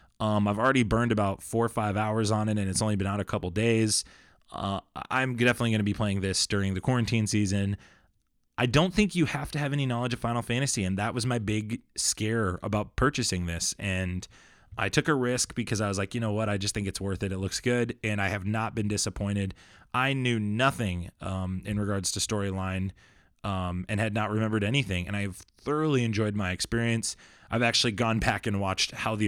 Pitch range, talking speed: 100-130 Hz, 220 wpm